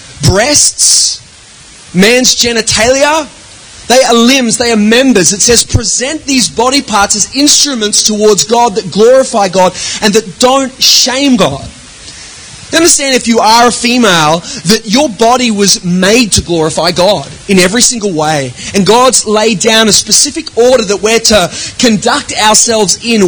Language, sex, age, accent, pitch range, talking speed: English, male, 30-49, Australian, 200-250 Hz, 150 wpm